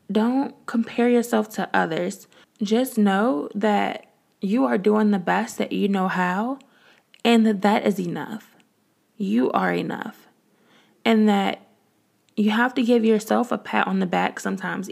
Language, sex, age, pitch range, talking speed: English, female, 20-39, 200-240 Hz, 155 wpm